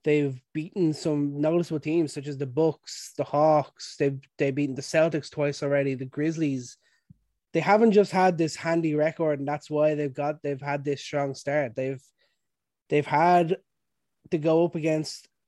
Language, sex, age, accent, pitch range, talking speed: English, male, 20-39, Irish, 145-165 Hz, 170 wpm